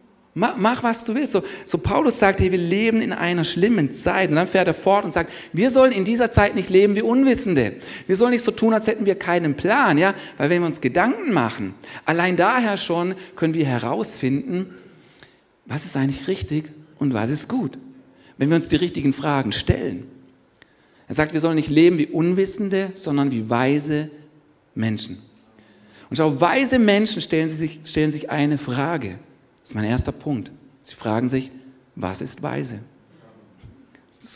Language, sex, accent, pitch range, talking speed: German, male, German, 140-195 Hz, 180 wpm